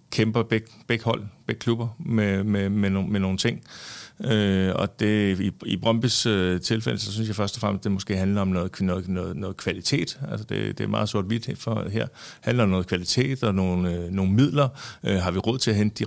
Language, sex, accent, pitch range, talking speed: Danish, male, native, 100-115 Hz, 230 wpm